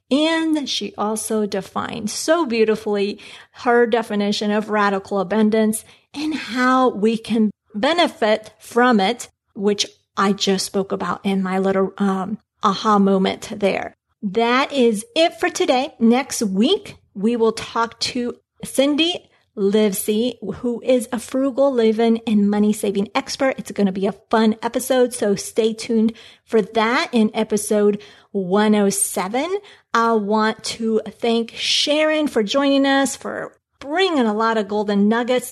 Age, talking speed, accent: 40-59, 140 wpm, American